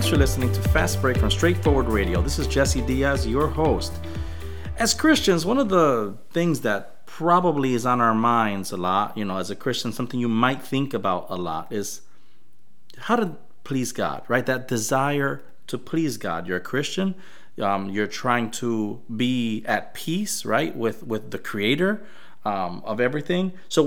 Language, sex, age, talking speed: English, male, 30-49, 180 wpm